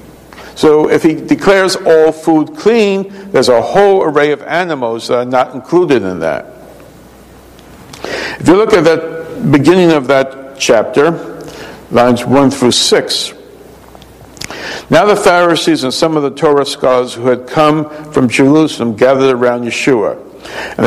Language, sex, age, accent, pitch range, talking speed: English, male, 60-79, American, 125-175 Hz, 145 wpm